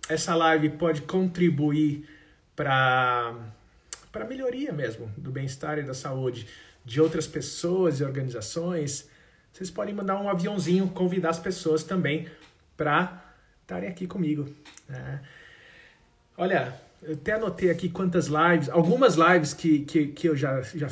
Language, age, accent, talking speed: Portuguese, 50-69, Brazilian, 130 wpm